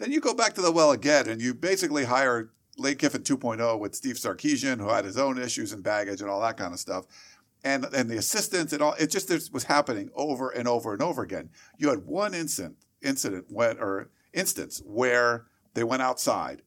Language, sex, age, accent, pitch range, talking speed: English, male, 50-69, American, 115-160 Hz, 210 wpm